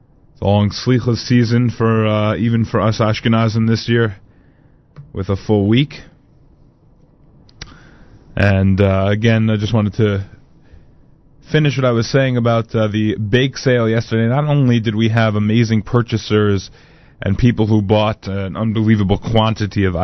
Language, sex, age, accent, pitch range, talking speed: English, male, 20-39, American, 95-115 Hz, 145 wpm